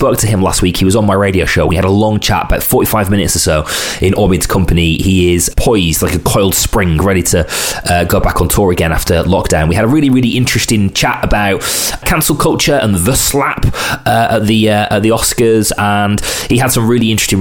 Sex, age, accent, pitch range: male, 20-39, British, 90-115 Hz